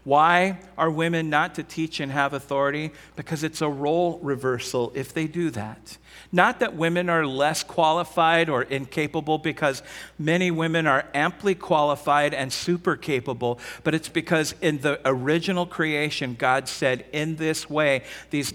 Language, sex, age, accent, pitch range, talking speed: English, male, 50-69, American, 135-160 Hz, 155 wpm